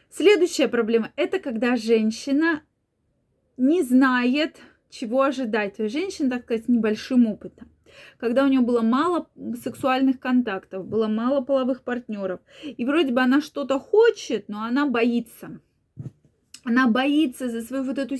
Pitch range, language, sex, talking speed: 220-280 Hz, Russian, female, 140 wpm